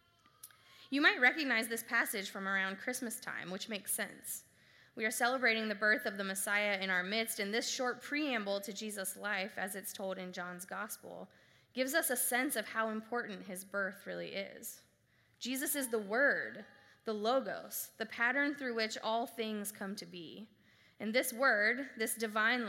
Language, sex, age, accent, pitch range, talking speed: English, female, 20-39, American, 190-235 Hz, 175 wpm